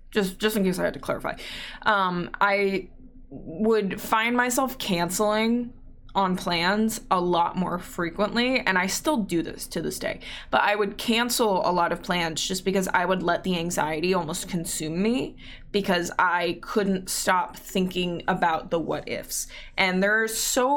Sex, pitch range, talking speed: female, 180-215 Hz, 170 wpm